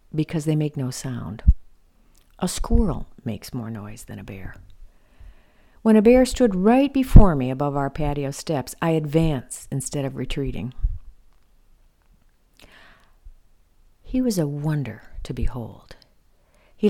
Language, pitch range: English, 120-175 Hz